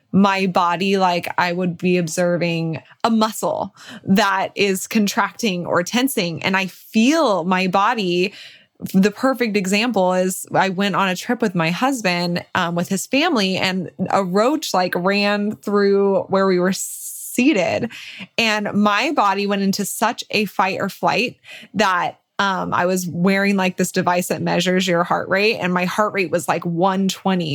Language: English